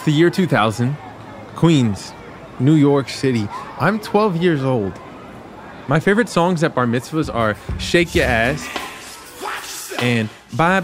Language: English